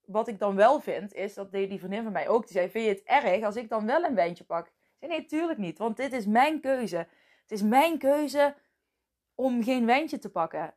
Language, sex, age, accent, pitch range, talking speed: Dutch, female, 20-39, Dutch, 200-270 Hz, 245 wpm